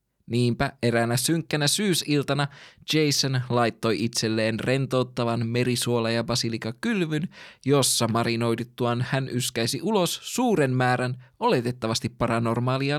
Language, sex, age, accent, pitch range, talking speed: Finnish, male, 20-39, native, 120-160 Hz, 90 wpm